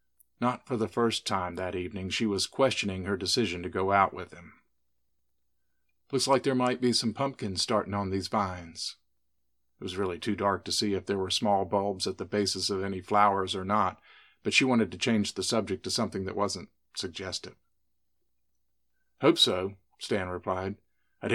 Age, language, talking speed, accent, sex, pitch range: 50-69, English, 185 wpm, American, male, 95-120 Hz